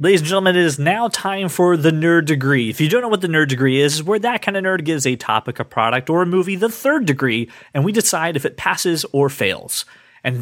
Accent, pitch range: American, 125-170 Hz